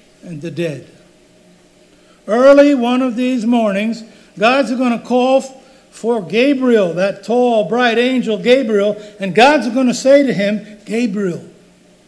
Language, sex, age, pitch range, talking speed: English, male, 60-79, 195-255 Hz, 135 wpm